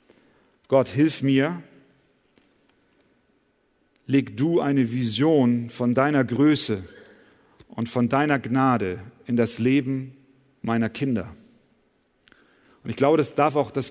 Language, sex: German, male